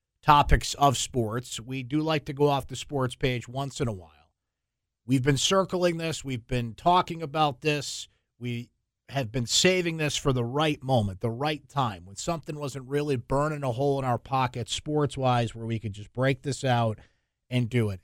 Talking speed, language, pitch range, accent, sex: 195 wpm, English, 120-150 Hz, American, male